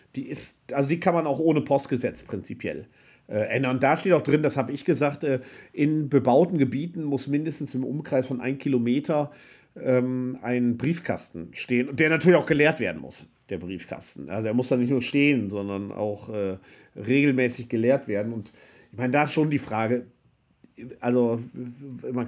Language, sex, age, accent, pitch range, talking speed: German, male, 50-69, German, 115-135 Hz, 185 wpm